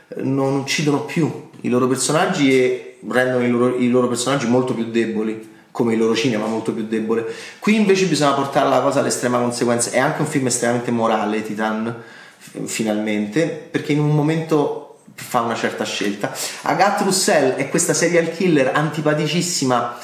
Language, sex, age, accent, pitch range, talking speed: Italian, male, 30-49, native, 125-155 Hz, 160 wpm